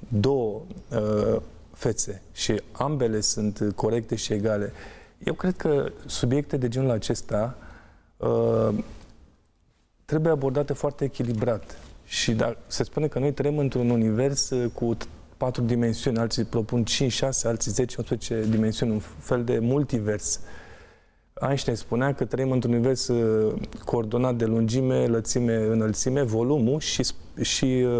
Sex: male